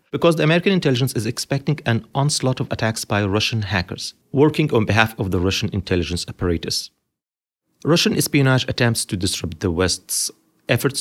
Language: English